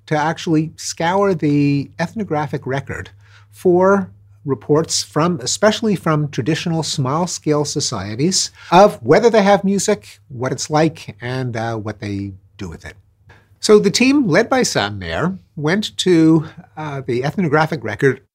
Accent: American